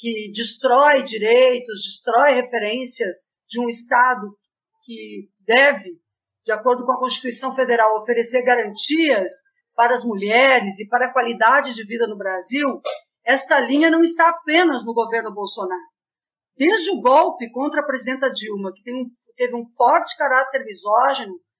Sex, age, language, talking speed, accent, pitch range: female, 50-69, Portuguese, 140 wpm, Brazilian, 230-290 Hz